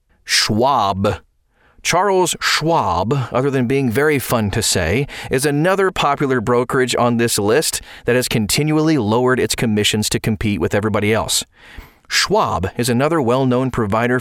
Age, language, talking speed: 30-49, English, 140 wpm